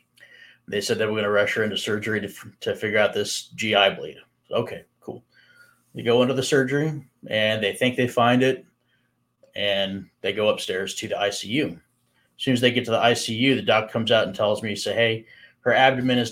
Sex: male